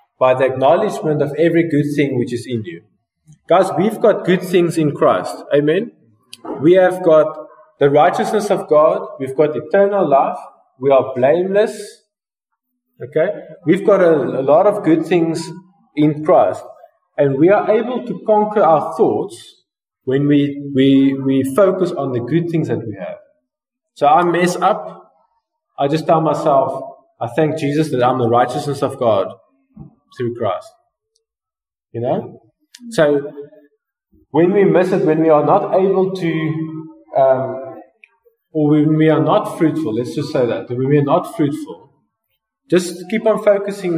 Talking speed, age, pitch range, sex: 160 wpm, 20-39, 140-200 Hz, male